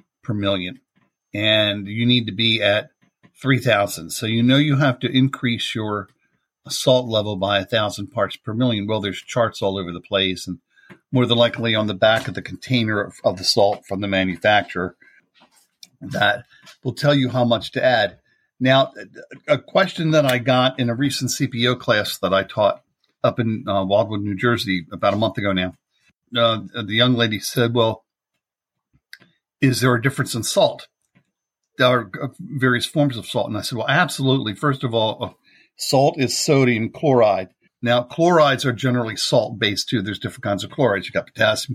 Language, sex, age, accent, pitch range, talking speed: English, male, 50-69, American, 100-130 Hz, 180 wpm